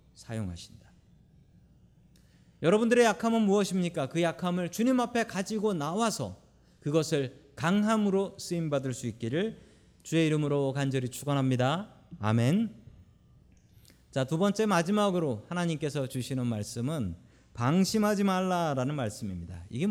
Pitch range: 115-190 Hz